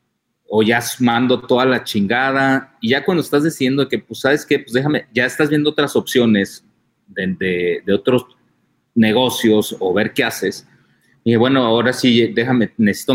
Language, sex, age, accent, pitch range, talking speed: Spanish, male, 40-59, Mexican, 115-140 Hz, 170 wpm